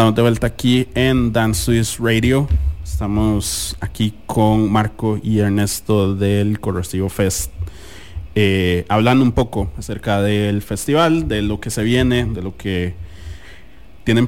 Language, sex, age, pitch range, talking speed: English, male, 30-49, 95-115 Hz, 135 wpm